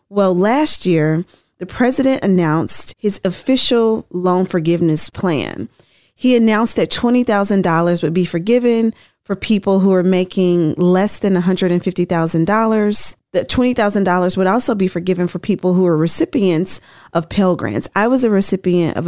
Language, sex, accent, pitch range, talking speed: English, female, American, 175-225 Hz, 140 wpm